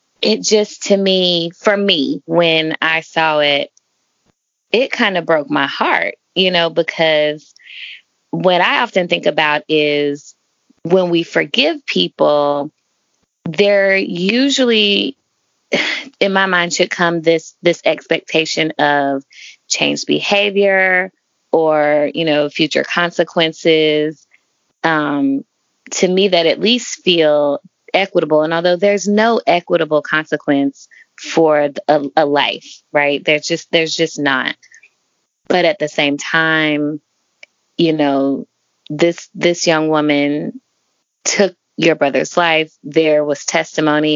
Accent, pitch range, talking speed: American, 150-180 Hz, 120 wpm